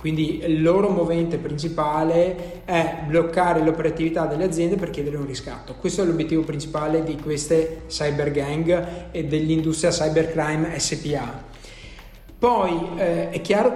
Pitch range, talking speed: 160-185 Hz, 130 wpm